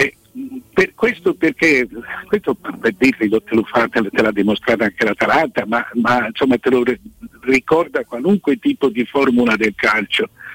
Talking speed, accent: 155 wpm, native